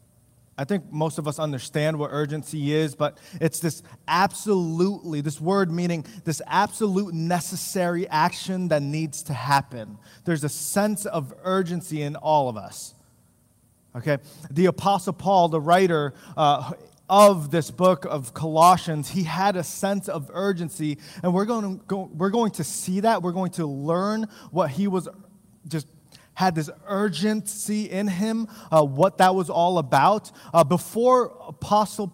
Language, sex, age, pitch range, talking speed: English, male, 20-39, 150-190 Hz, 155 wpm